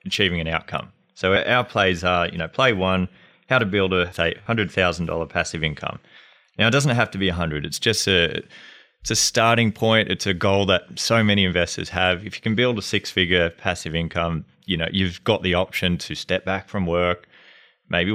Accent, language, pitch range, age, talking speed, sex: Australian, English, 85-100 Hz, 20-39, 210 wpm, male